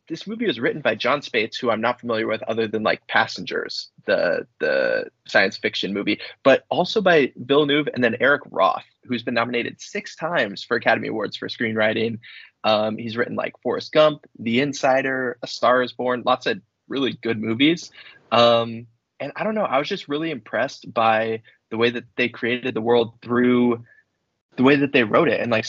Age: 20-39